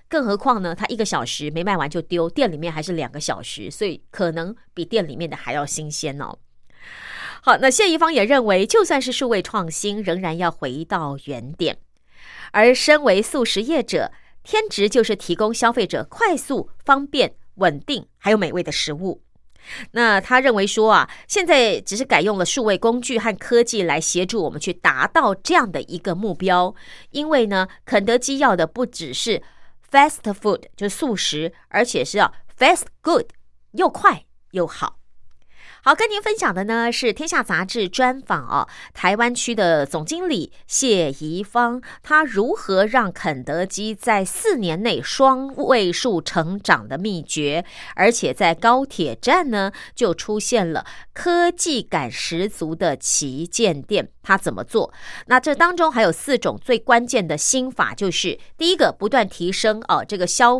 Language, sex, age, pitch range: Chinese, female, 30-49, 170-255 Hz